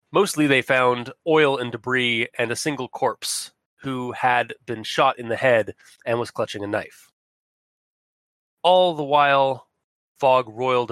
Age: 30-49